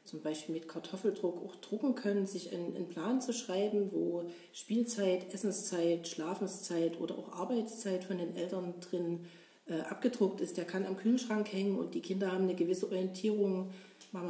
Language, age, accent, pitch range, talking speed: German, 40-59, German, 175-195 Hz, 170 wpm